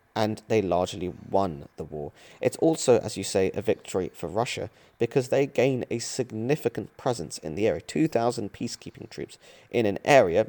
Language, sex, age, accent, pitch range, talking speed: English, male, 40-59, British, 95-120 Hz, 170 wpm